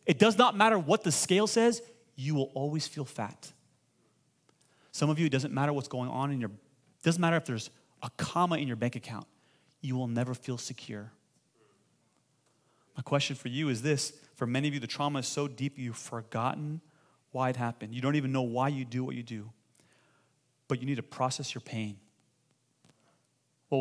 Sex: male